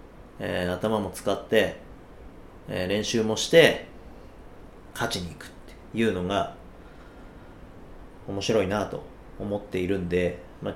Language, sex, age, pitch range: Japanese, male, 40-59, 90-115 Hz